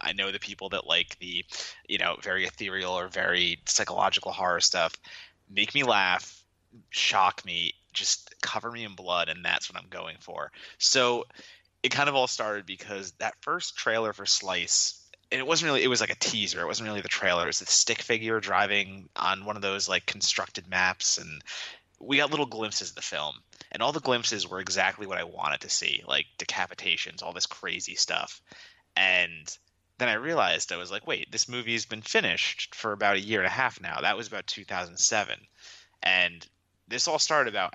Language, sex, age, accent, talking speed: English, male, 20-39, American, 205 wpm